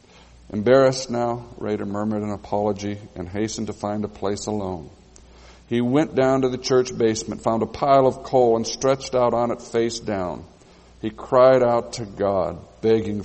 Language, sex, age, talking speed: English, male, 50-69, 170 wpm